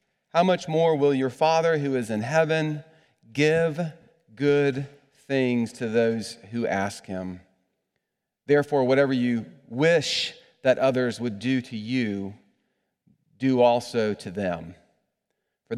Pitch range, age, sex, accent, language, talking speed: 105-145 Hz, 40-59, male, American, English, 125 wpm